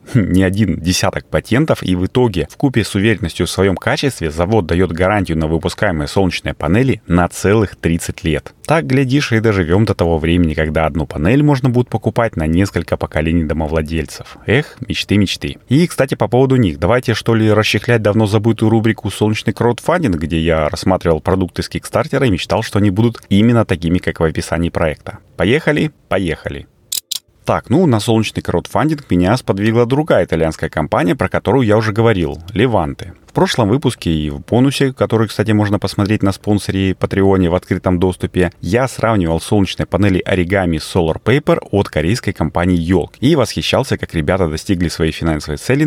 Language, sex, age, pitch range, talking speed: Russian, male, 30-49, 85-115 Hz, 165 wpm